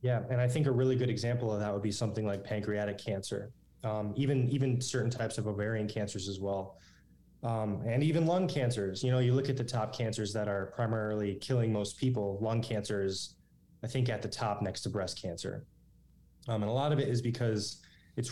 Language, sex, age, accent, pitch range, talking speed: English, male, 20-39, American, 100-125 Hz, 215 wpm